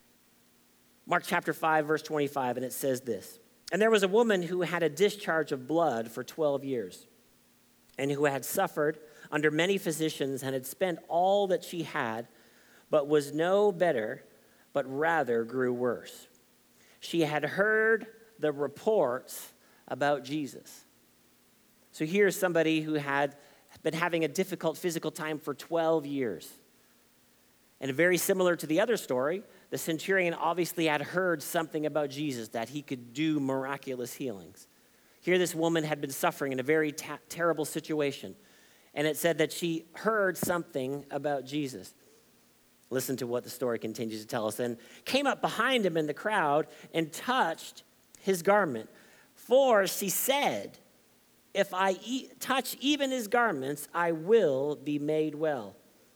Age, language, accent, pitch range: 50-69, English, American, 140-180 Hz